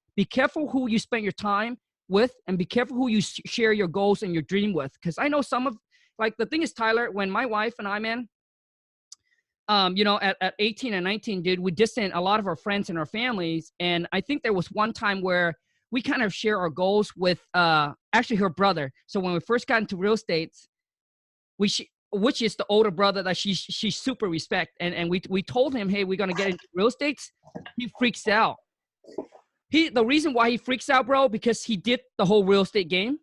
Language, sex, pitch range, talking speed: English, male, 180-225 Hz, 230 wpm